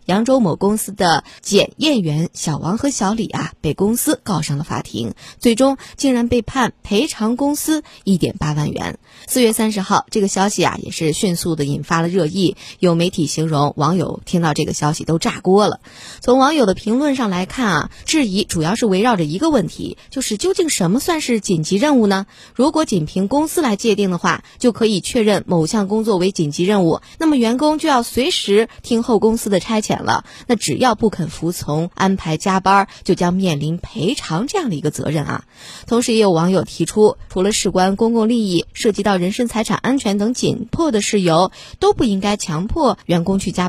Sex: female